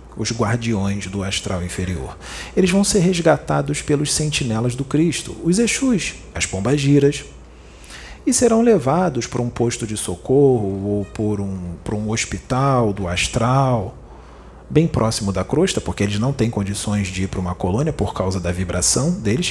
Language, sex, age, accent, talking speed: Portuguese, male, 40-59, Brazilian, 155 wpm